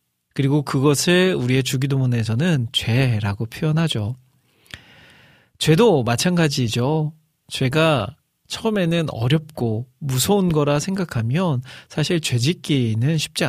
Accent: native